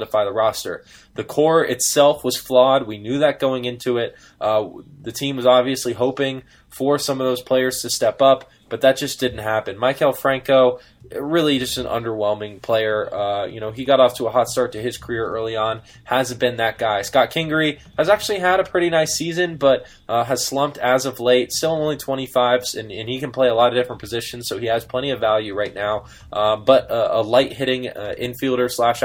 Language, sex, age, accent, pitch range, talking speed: English, male, 20-39, American, 115-135 Hz, 215 wpm